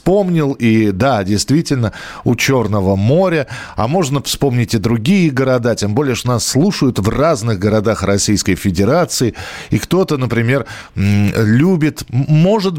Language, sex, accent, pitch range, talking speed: Russian, male, native, 105-145 Hz, 125 wpm